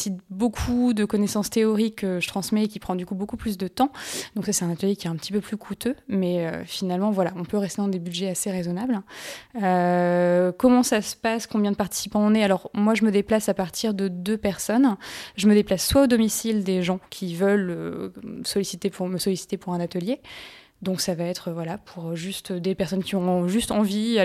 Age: 20-39